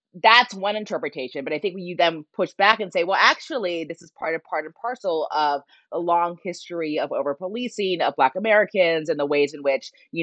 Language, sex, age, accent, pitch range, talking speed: English, female, 20-39, American, 145-190 Hz, 215 wpm